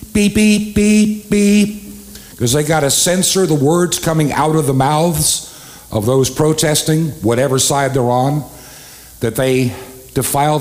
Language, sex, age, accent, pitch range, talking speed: English, male, 60-79, American, 120-180 Hz, 145 wpm